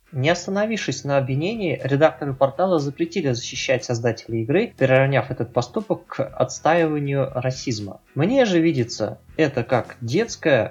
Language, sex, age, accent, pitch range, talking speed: Russian, male, 20-39, native, 125-160 Hz, 125 wpm